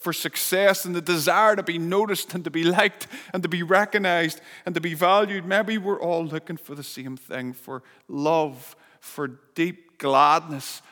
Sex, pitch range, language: male, 150-190 Hz, English